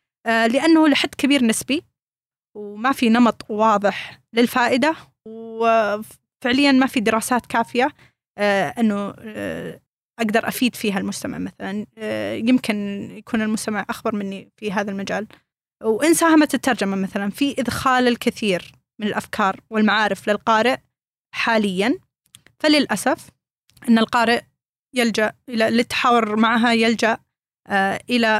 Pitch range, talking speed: 210-240 Hz, 105 wpm